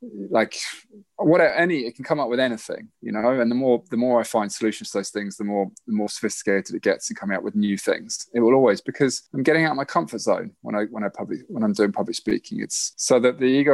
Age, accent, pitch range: 20-39, British, 105-135 Hz